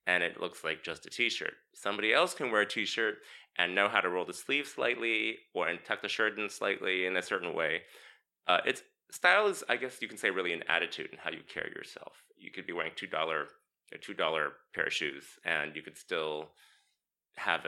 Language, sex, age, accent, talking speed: English, male, 30-49, American, 215 wpm